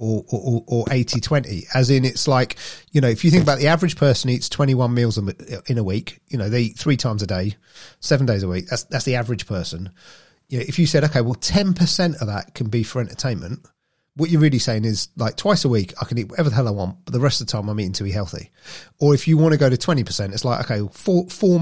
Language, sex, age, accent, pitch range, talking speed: English, male, 40-59, British, 110-145 Hz, 275 wpm